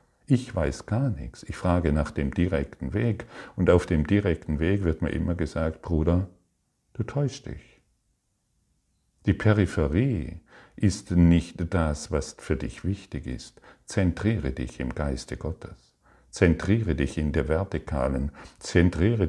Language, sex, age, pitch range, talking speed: German, male, 50-69, 75-90 Hz, 135 wpm